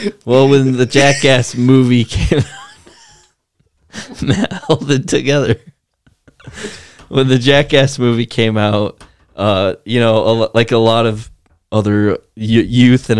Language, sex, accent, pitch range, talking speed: English, male, American, 100-125 Hz, 125 wpm